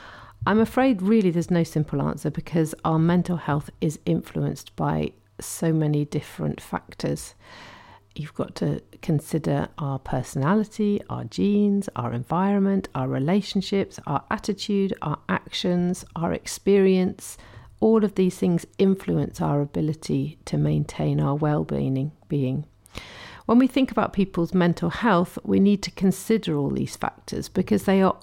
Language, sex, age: English, female, 50-69